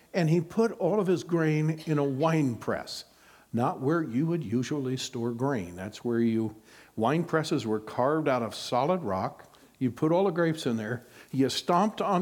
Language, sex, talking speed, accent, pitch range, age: English, male, 190 wpm, American, 130-165 Hz, 60-79